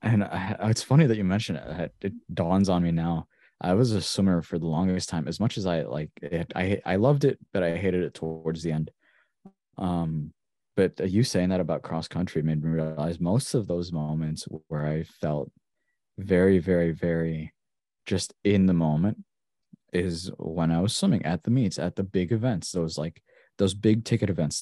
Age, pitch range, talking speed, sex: 20-39, 85-100 Hz, 195 wpm, male